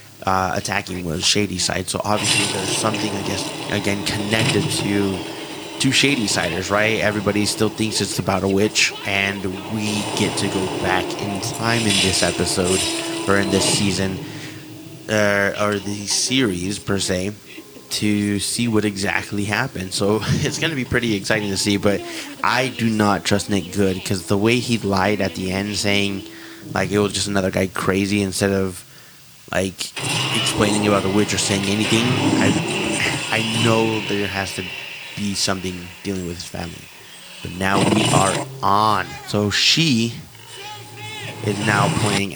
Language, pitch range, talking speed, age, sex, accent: English, 95-110 Hz, 165 wpm, 20-39, male, American